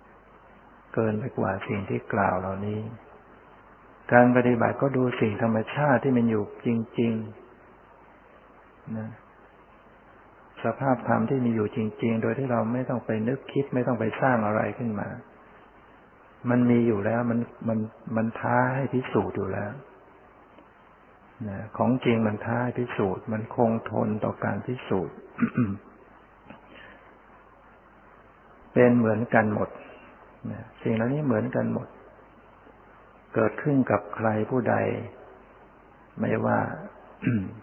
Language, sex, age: Thai, male, 60-79